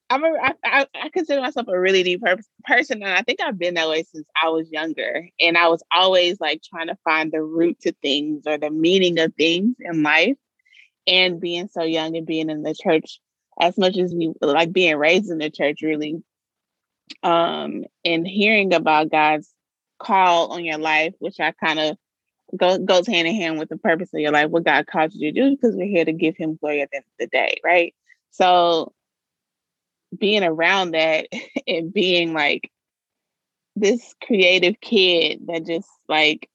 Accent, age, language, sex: American, 20-39, English, female